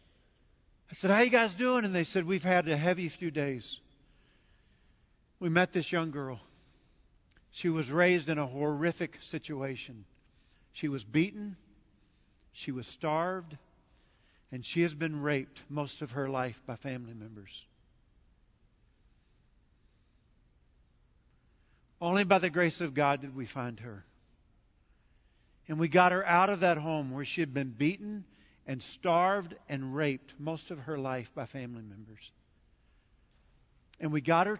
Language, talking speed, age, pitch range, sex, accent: English, 145 wpm, 50-69, 125-170 Hz, male, American